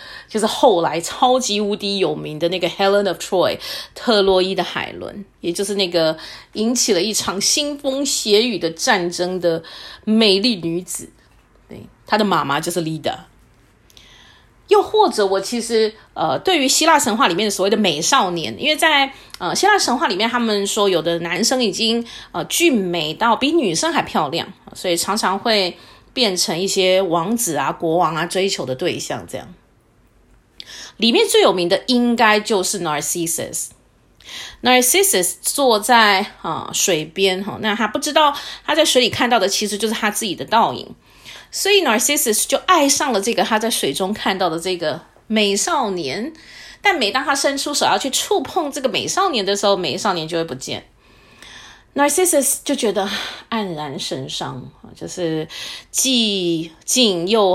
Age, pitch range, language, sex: 30-49, 180-260 Hz, Chinese, female